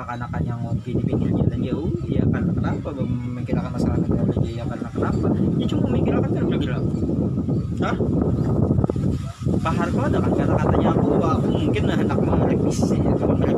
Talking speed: 180 wpm